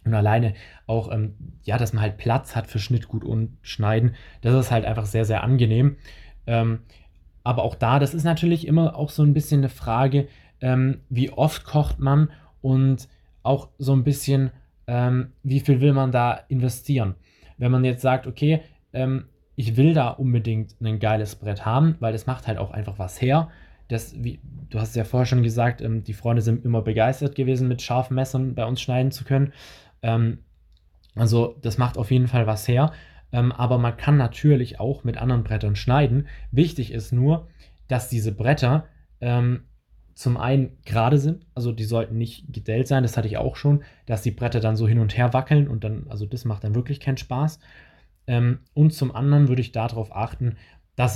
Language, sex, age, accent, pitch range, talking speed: German, male, 20-39, German, 110-135 Hz, 190 wpm